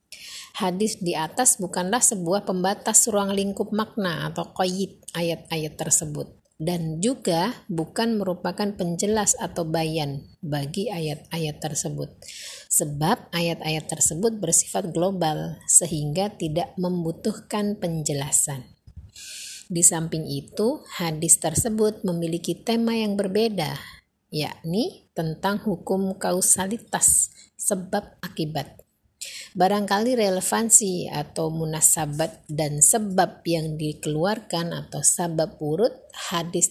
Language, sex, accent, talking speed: Indonesian, female, native, 95 wpm